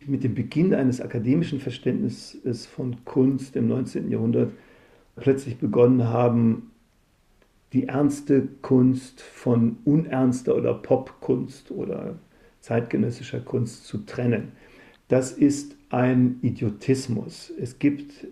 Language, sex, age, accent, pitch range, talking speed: German, male, 50-69, German, 120-145 Hz, 105 wpm